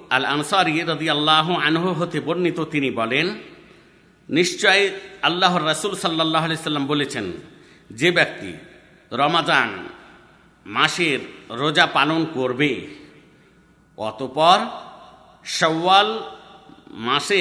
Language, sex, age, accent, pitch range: Bengali, male, 50-69, native, 150-190 Hz